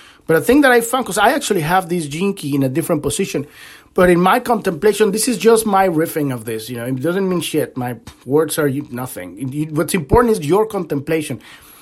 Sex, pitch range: male, 150-230 Hz